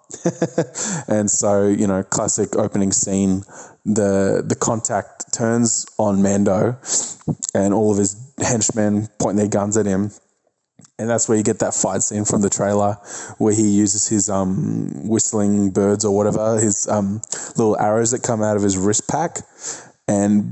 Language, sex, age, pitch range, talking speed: English, male, 20-39, 100-115 Hz, 160 wpm